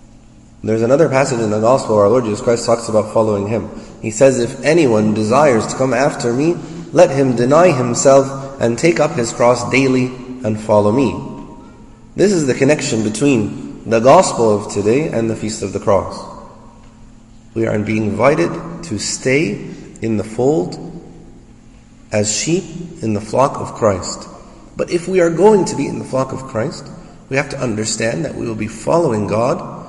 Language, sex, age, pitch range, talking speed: English, male, 30-49, 110-145 Hz, 180 wpm